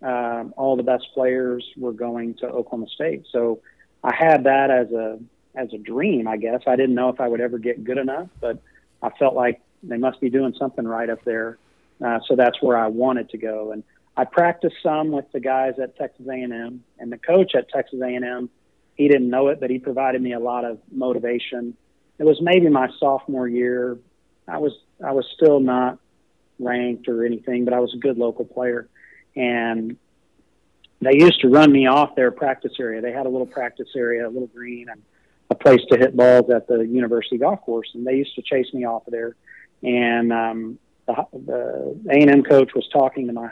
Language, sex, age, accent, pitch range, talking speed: English, male, 40-59, American, 120-130 Hz, 205 wpm